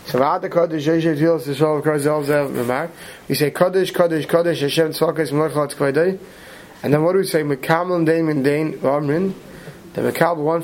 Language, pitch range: English, 150-170 Hz